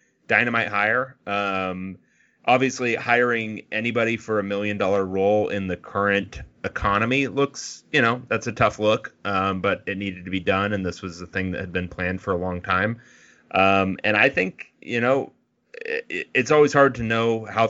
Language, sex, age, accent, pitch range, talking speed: English, male, 30-49, American, 95-115 Hz, 185 wpm